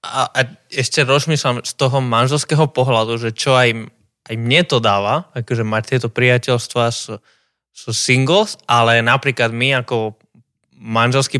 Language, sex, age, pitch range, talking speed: Slovak, male, 20-39, 120-145 Hz, 145 wpm